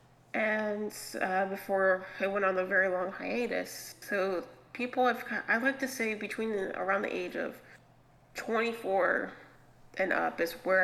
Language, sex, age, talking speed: English, female, 30-49, 150 wpm